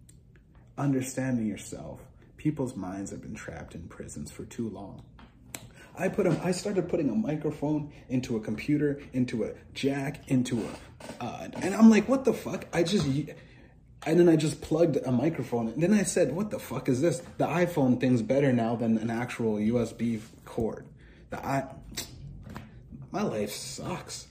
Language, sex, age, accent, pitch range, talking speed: English, male, 30-49, American, 115-155 Hz, 170 wpm